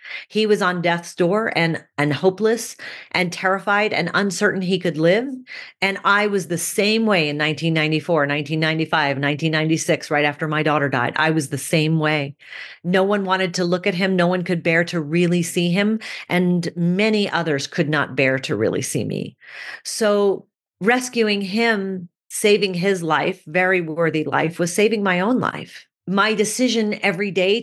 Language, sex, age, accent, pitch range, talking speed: English, female, 40-59, American, 165-205 Hz, 170 wpm